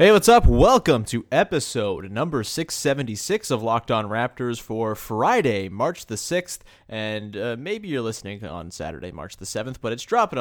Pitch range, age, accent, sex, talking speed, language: 100-135 Hz, 30-49, American, male, 175 wpm, English